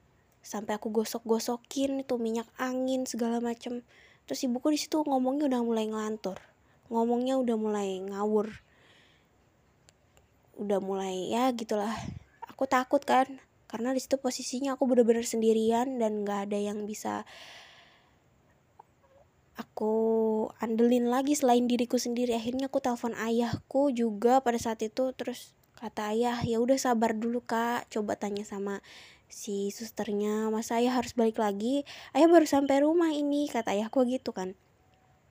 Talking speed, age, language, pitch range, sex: 135 wpm, 20-39, Indonesian, 215-255 Hz, female